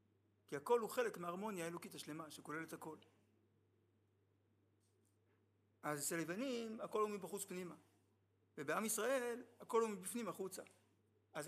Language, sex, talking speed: Hebrew, male, 120 wpm